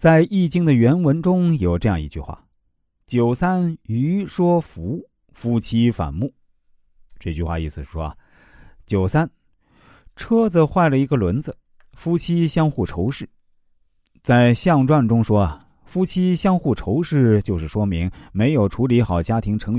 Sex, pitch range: male, 90-145 Hz